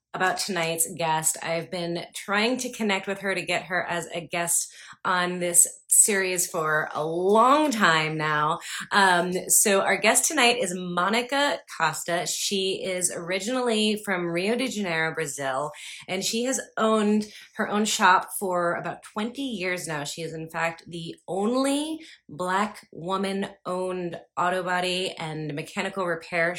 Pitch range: 160-195 Hz